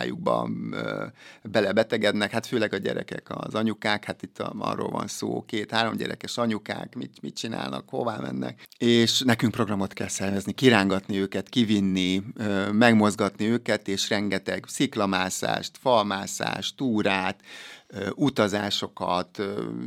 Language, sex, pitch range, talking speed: Hungarian, male, 95-110 Hz, 110 wpm